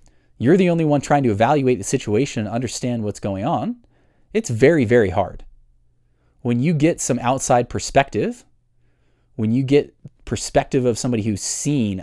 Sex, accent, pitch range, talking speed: male, American, 105-140 Hz, 160 wpm